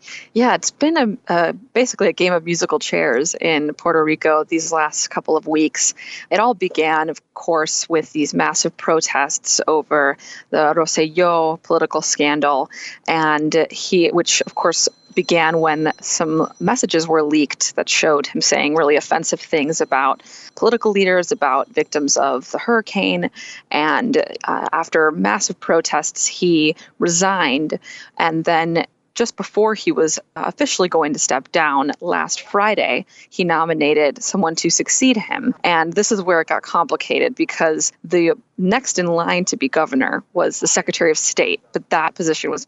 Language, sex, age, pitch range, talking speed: English, female, 20-39, 155-195 Hz, 155 wpm